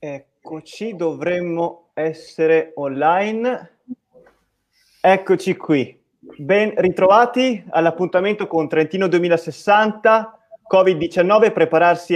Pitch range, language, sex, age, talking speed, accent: 155-210 Hz, Italian, male, 30-49, 70 wpm, native